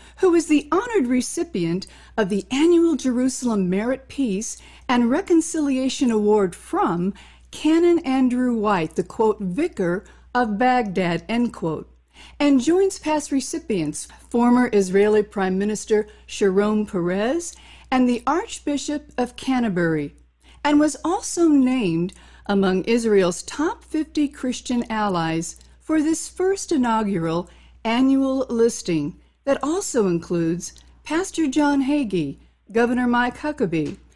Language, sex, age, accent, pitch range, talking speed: English, female, 50-69, American, 190-275 Hz, 115 wpm